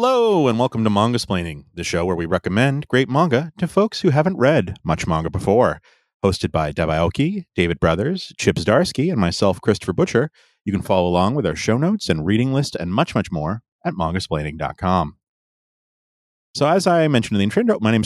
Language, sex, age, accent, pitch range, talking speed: English, male, 30-49, American, 90-130 Hz, 190 wpm